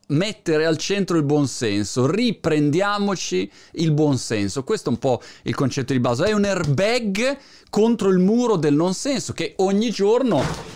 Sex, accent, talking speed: male, native, 165 wpm